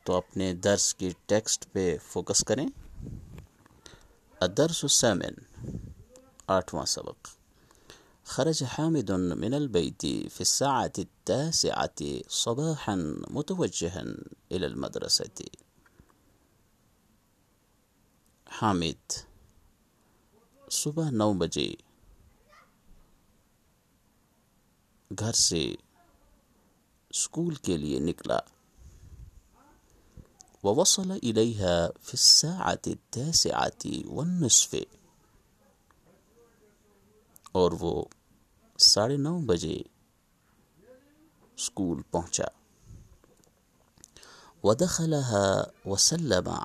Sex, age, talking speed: male, 50-69, 60 wpm